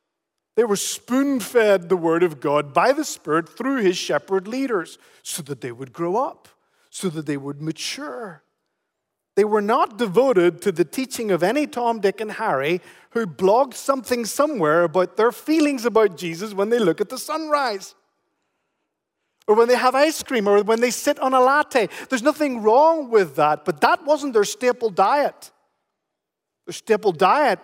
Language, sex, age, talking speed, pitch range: English, male, 40-59, 175 wpm, 165-240 Hz